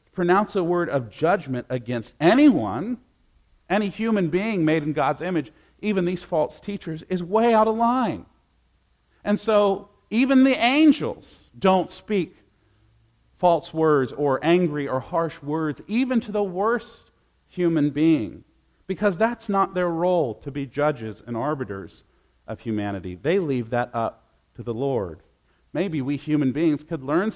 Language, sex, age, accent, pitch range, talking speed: English, male, 50-69, American, 120-200 Hz, 150 wpm